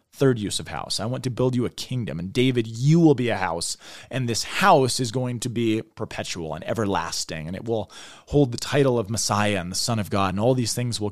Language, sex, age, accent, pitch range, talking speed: English, male, 20-39, American, 115-150 Hz, 250 wpm